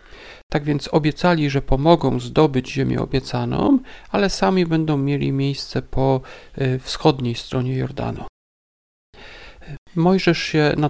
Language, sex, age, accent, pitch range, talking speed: Polish, male, 40-59, native, 130-170 Hz, 110 wpm